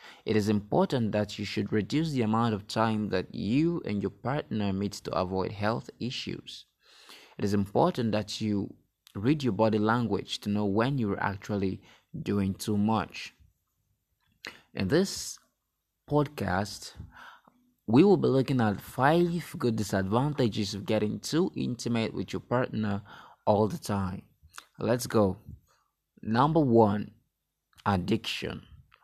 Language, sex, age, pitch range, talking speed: English, male, 20-39, 100-125 Hz, 130 wpm